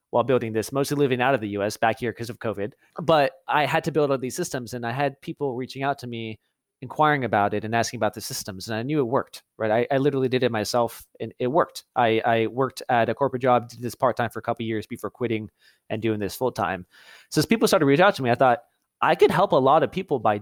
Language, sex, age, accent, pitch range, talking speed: English, male, 30-49, American, 110-145 Hz, 275 wpm